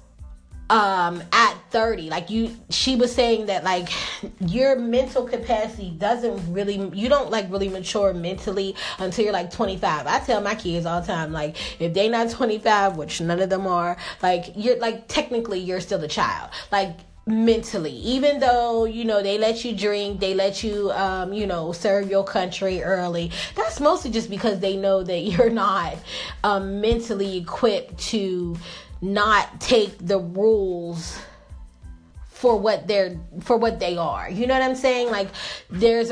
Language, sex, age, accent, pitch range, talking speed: English, female, 20-39, American, 175-225 Hz, 170 wpm